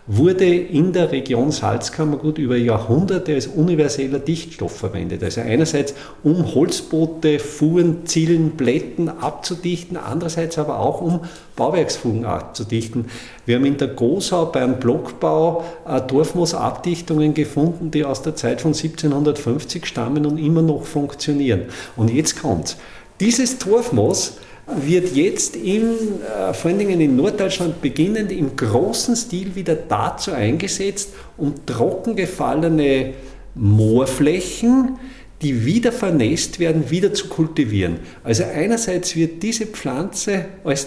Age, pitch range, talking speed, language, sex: 50-69, 135-175 Hz, 120 wpm, German, male